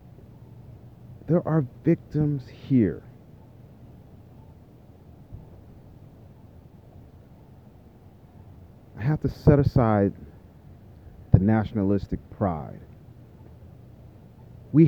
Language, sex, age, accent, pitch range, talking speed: English, male, 30-49, American, 100-135 Hz, 50 wpm